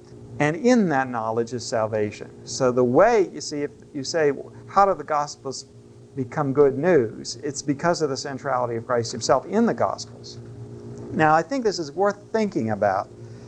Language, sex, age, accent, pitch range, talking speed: English, male, 50-69, American, 110-145 Hz, 180 wpm